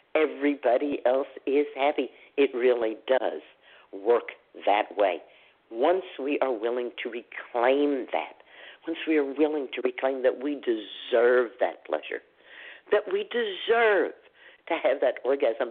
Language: English